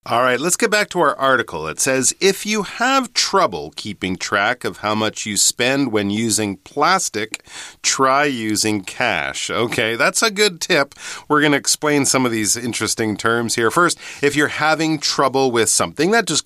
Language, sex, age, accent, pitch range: Chinese, male, 40-59, American, 105-160 Hz